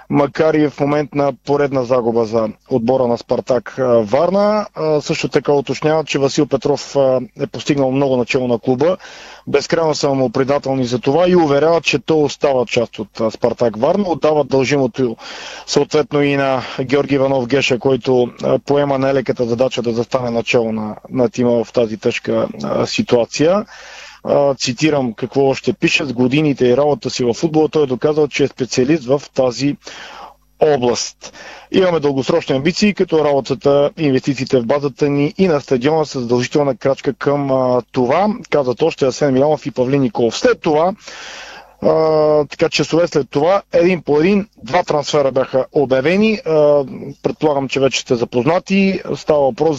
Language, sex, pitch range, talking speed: Bulgarian, male, 130-155 Hz, 155 wpm